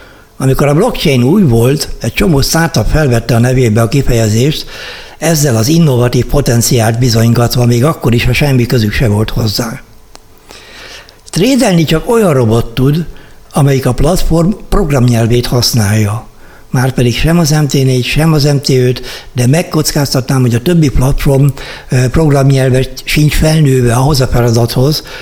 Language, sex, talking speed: Hungarian, male, 135 wpm